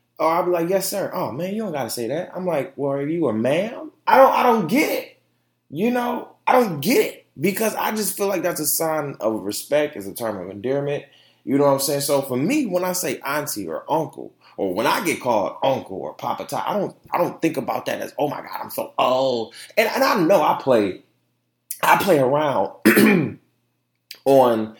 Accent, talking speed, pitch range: American, 230 wpm, 130-190 Hz